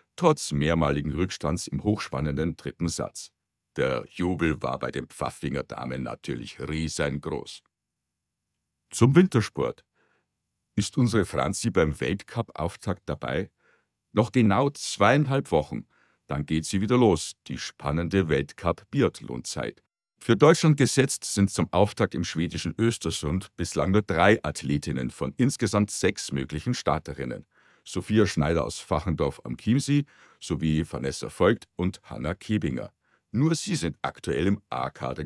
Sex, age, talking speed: male, 60-79, 125 wpm